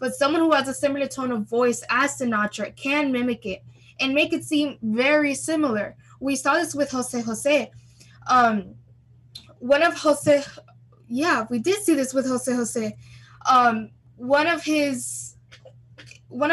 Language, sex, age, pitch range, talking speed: English, female, 10-29, 215-285 Hz, 155 wpm